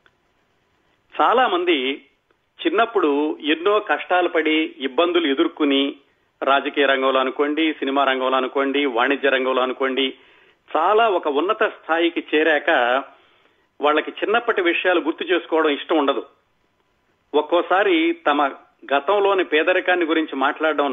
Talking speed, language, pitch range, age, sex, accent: 100 wpm, Telugu, 140-180 Hz, 40-59, male, native